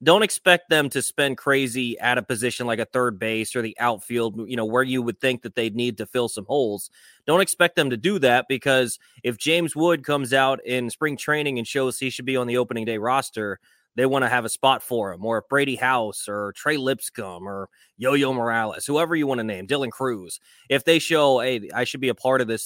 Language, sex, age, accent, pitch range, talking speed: English, male, 20-39, American, 115-135 Hz, 235 wpm